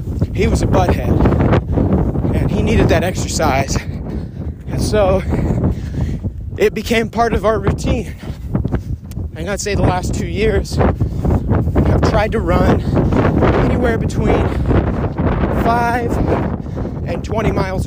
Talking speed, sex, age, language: 115 wpm, male, 30-49, English